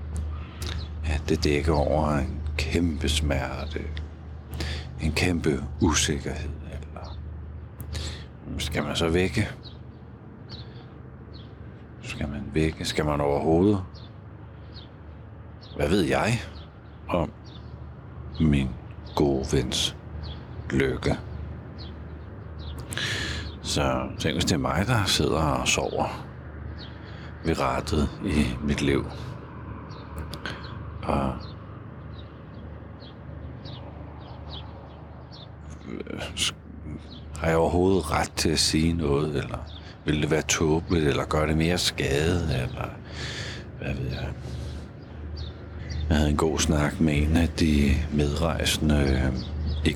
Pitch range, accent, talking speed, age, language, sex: 75-85 Hz, native, 90 wpm, 60-79, Danish, male